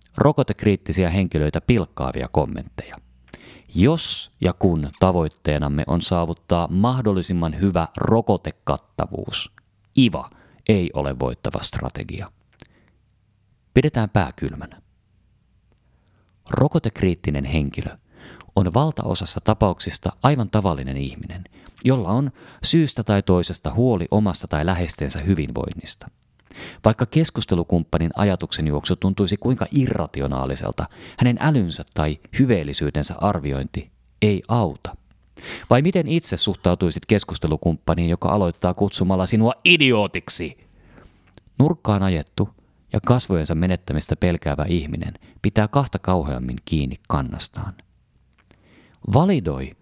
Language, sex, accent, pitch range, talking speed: Finnish, male, native, 85-110 Hz, 90 wpm